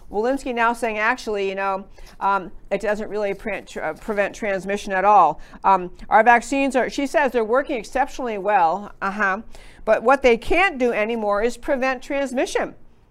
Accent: American